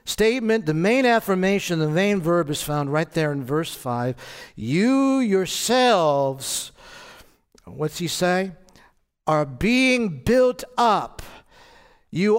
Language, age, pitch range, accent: English, 60-79, 155-230 Hz, American